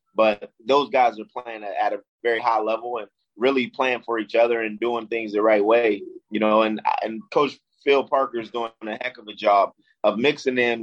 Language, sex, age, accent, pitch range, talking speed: English, male, 20-39, American, 110-125 Hz, 215 wpm